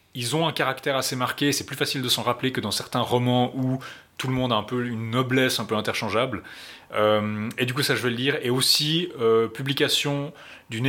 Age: 20-39